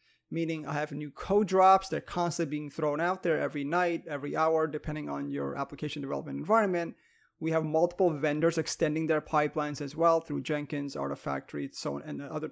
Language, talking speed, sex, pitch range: English, 180 wpm, male, 150-175 Hz